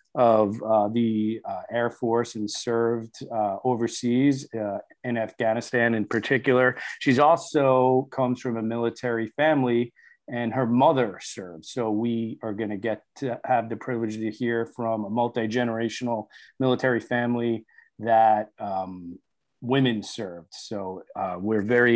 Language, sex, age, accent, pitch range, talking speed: English, male, 40-59, American, 110-125 Hz, 135 wpm